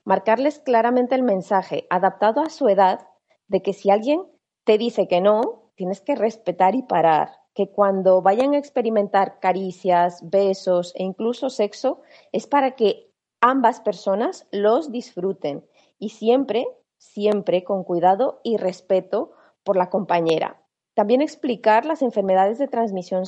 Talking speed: 140 wpm